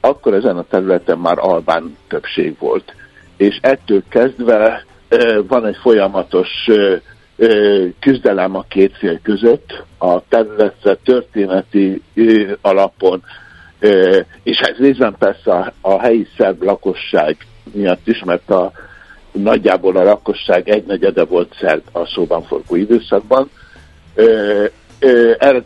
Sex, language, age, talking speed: male, Hungarian, 60-79, 105 wpm